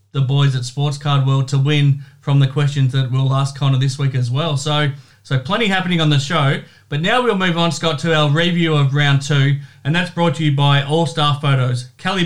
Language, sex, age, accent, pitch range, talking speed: English, male, 30-49, Australian, 135-155 Hz, 230 wpm